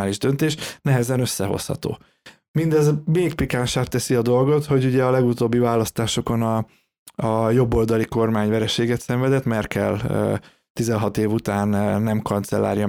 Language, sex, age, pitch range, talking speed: Hungarian, male, 20-39, 105-130 Hz, 115 wpm